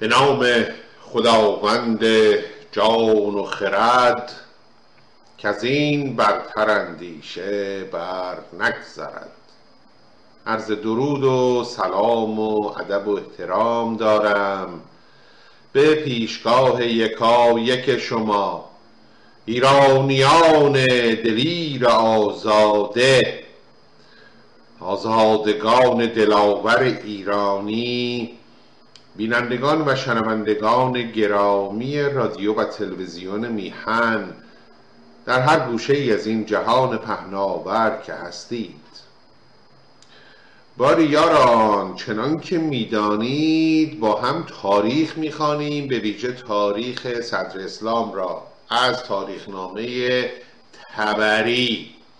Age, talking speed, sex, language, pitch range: 50-69, 80 wpm, male, Persian, 105-130 Hz